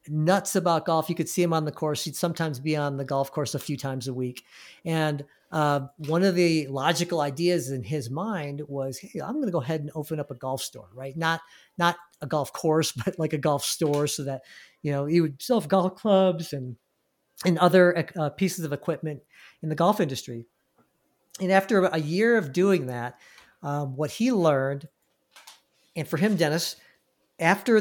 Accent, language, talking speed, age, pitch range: American, English, 200 wpm, 50-69, 145-180 Hz